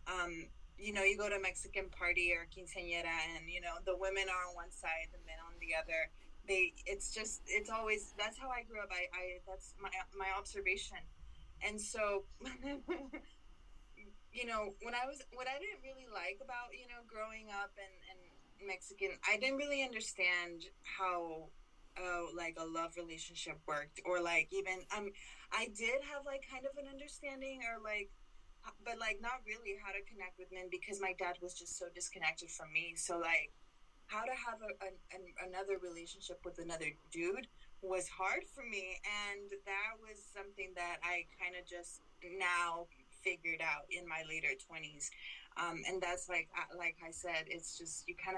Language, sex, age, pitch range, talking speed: English, female, 20-39, 175-220 Hz, 185 wpm